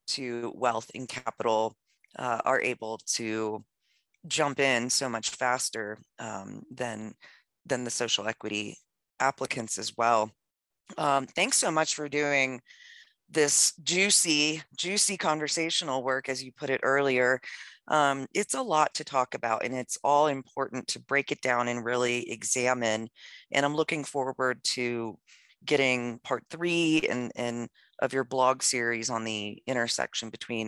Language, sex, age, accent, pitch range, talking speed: English, female, 30-49, American, 120-150 Hz, 145 wpm